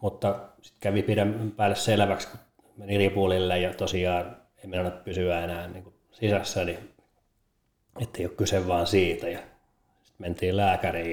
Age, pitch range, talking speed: 30-49, 90-105 Hz, 135 wpm